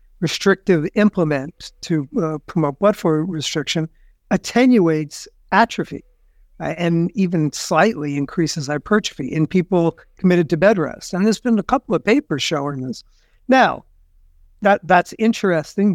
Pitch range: 155-190 Hz